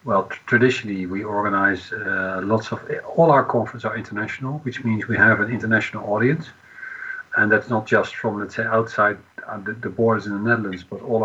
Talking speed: 190 wpm